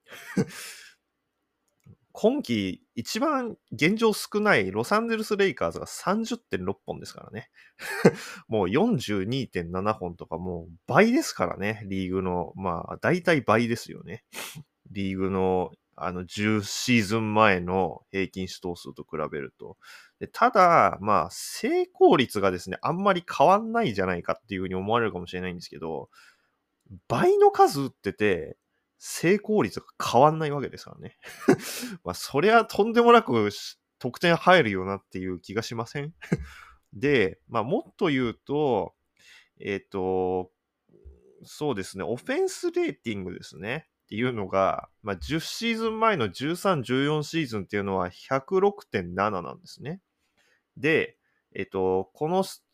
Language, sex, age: Japanese, male, 20-39